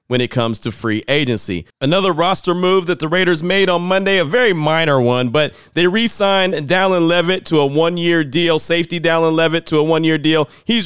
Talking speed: 200 wpm